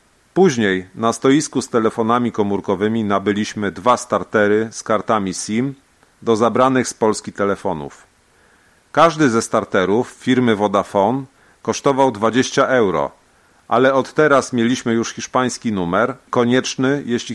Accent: native